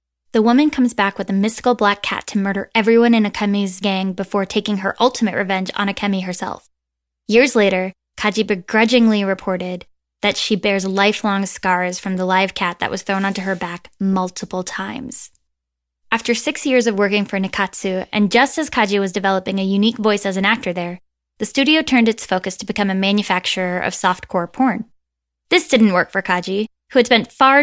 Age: 10-29